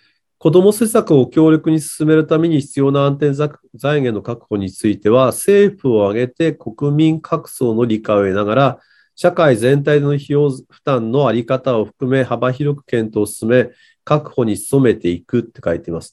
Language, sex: Japanese, male